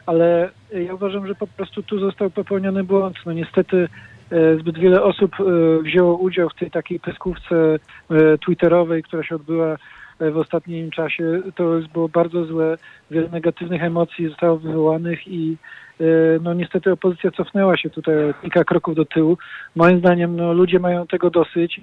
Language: Polish